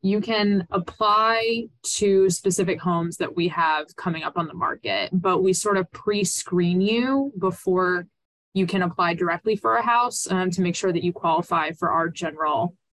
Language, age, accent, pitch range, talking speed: English, 20-39, American, 170-195 Hz, 175 wpm